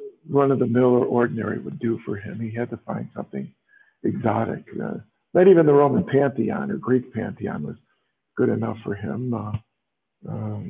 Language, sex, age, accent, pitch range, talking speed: English, male, 50-69, American, 110-135 Hz, 165 wpm